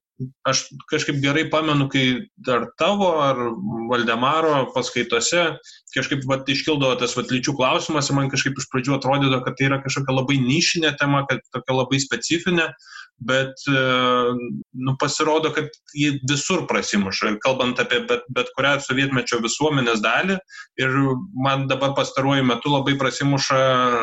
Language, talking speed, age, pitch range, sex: English, 140 wpm, 20-39, 125-145 Hz, male